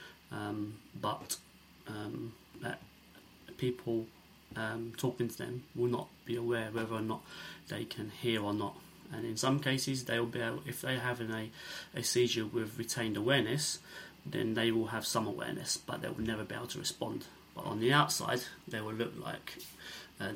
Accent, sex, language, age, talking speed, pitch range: British, male, English, 20-39, 175 wpm, 110-125 Hz